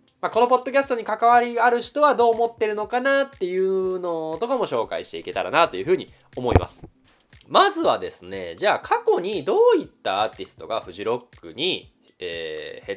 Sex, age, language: male, 20-39, Japanese